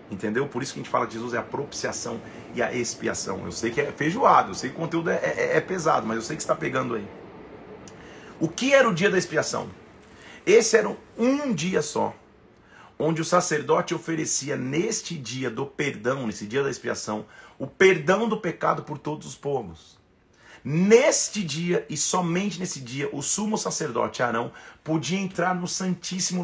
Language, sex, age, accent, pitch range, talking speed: Portuguese, male, 40-59, Brazilian, 130-185 Hz, 185 wpm